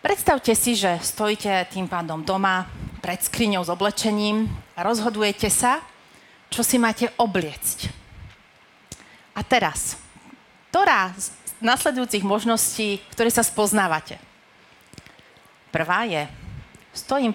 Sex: female